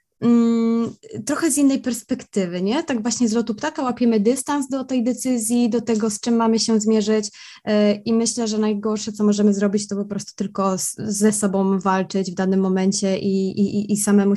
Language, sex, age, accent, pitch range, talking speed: Polish, female, 20-39, native, 205-235 Hz, 180 wpm